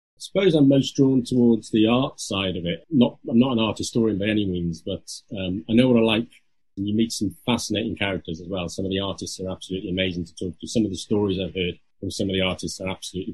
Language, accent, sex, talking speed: English, British, male, 260 wpm